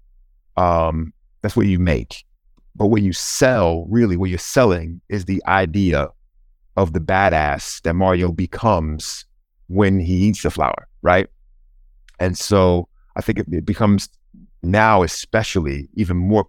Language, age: English, 30-49